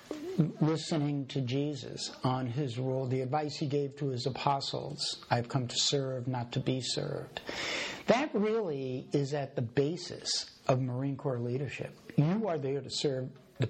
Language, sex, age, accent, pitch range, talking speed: English, male, 60-79, American, 130-170 Hz, 160 wpm